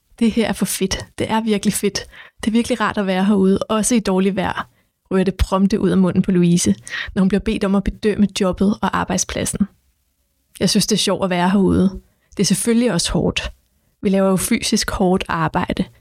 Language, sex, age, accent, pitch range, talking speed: Danish, female, 20-39, native, 190-210 Hz, 215 wpm